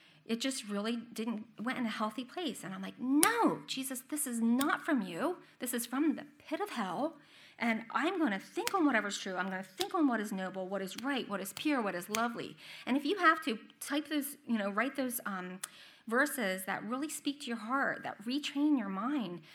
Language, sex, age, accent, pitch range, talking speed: English, female, 30-49, American, 185-260 Hz, 225 wpm